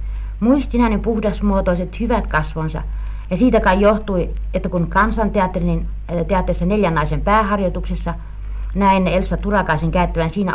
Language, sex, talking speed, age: Finnish, female, 110 wpm, 50-69